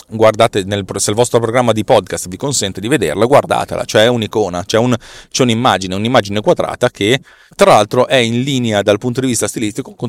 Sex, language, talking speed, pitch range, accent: male, Italian, 190 wpm, 100-125 Hz, native